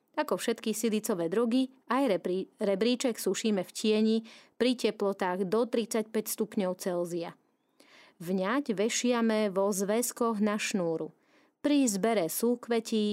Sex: female